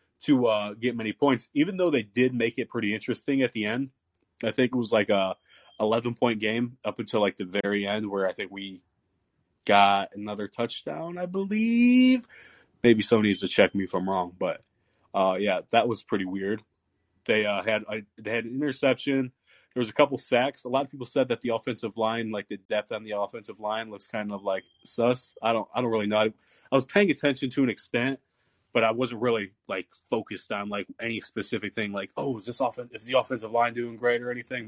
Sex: male